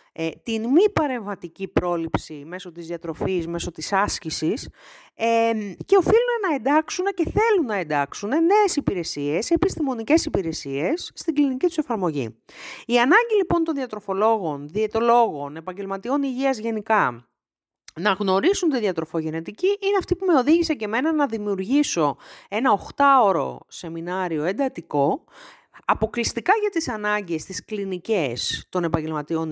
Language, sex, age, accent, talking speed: Greek, female, 40-59, native, 120 wpm